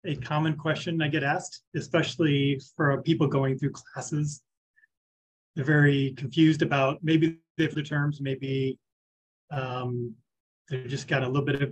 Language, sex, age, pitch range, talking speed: English, male, 30-49, 135-155 Hz, 145 wpm